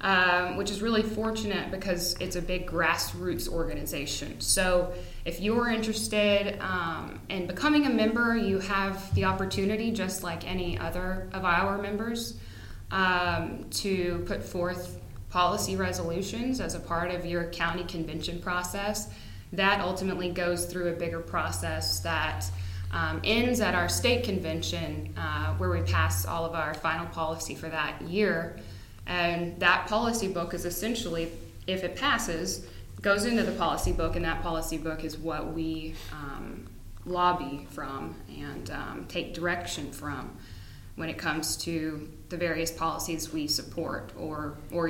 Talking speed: 150 wpm